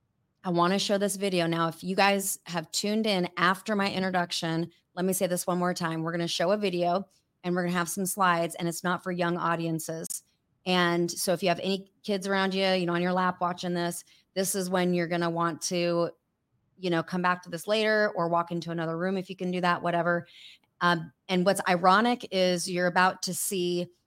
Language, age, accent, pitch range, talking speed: English, 30-49, American, 175-195 Hz, 230 wpm